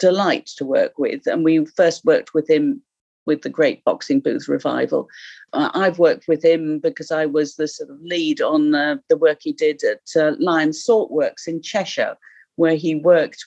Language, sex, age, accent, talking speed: English, female, 50-69, British, 190 wpm